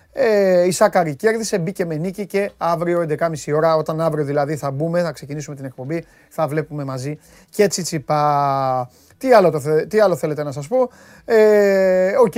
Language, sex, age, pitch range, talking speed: Greek, male, 30-49, 155-215 Hz, 165 wpm